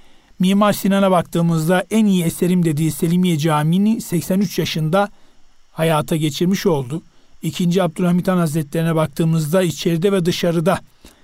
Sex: male